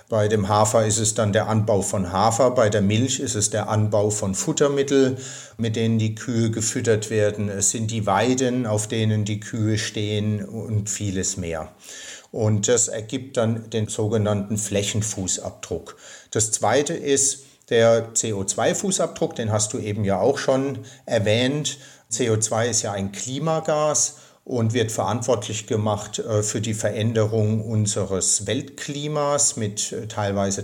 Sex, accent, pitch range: male, German, 105-130 Hz